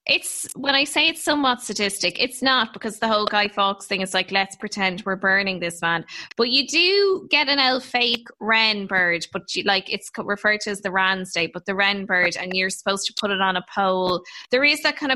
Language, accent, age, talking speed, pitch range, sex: English, Irish, 10-29, 235 wpm, 195-250 Hz, female